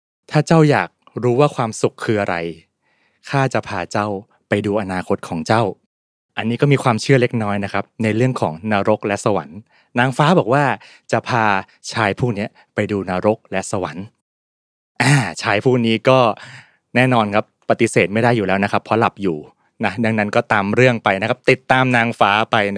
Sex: male